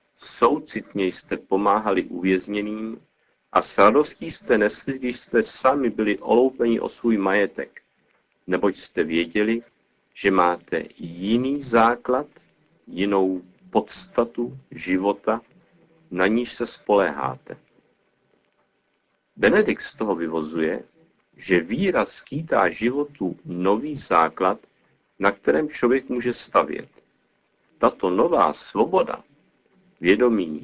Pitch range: 95-120 Hz